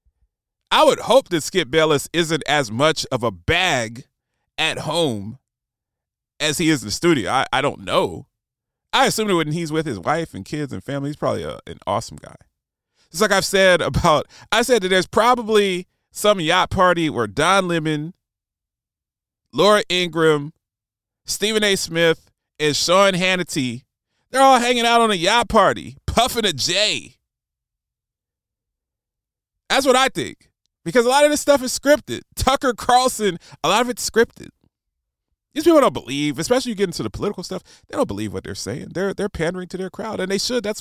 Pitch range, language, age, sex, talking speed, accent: 130-210 Hz, English, 30-49, male, 180 wpm, American